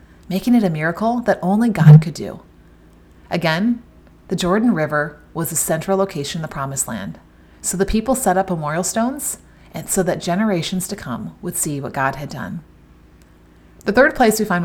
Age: 30-49